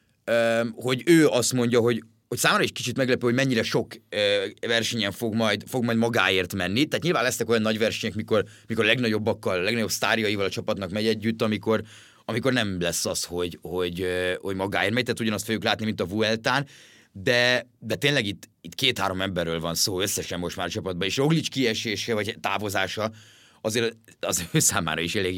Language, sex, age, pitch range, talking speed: Hungarian, male, 30-49, 95-120 Hz, 185 wpm